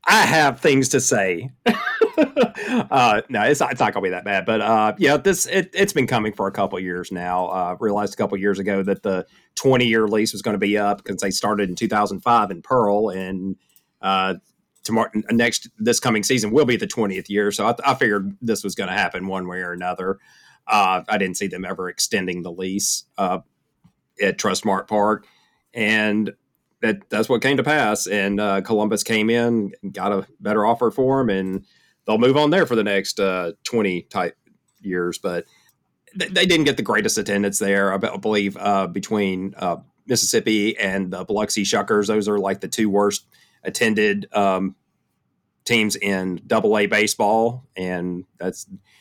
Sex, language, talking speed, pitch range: male, English, 190 wpm, 95-120 Hz